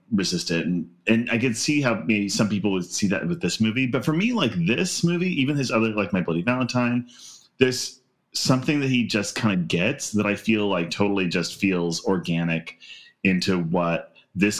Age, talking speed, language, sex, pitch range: 30-49, 200 wpm, English, male, 90-120 Hz